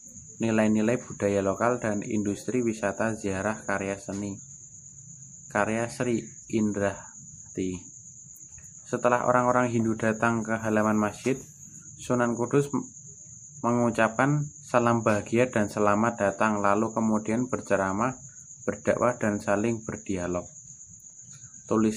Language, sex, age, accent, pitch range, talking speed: Indonesian, male, 30-49, native, 105-125 Hz, 95 wpm